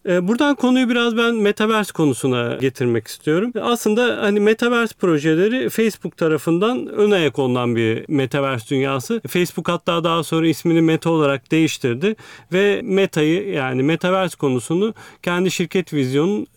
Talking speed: 125 wpm